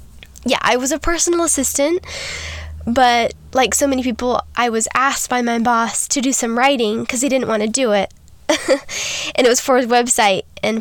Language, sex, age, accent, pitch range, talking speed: English, female, 10-29, American, 220-270 Hz, 195 wpm